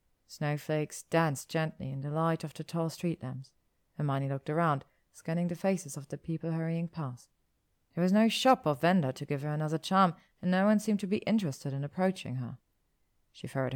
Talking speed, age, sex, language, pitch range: 195 wpm, 30-49, female, German, 140-185 Hz